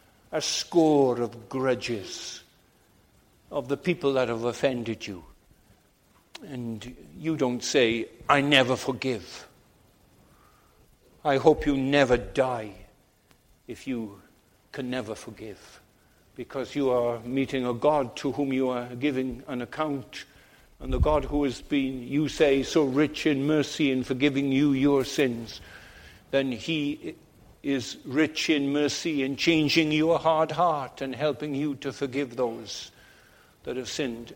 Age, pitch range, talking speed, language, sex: 60-79, 120-140 Hz, 135 wpm, English, male